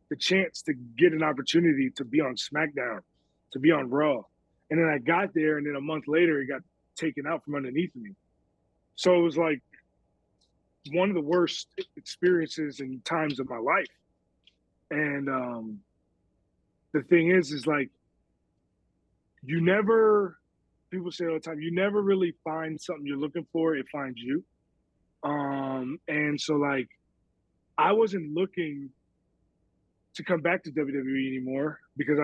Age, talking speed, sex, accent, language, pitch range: 30-49, 155 wpm, male, American, English, 140-175 Hz